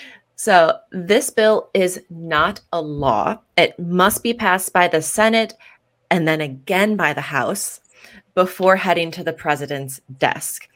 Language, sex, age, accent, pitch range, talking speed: English, female, 30-49, American, 155-195 Hz, 145 wpm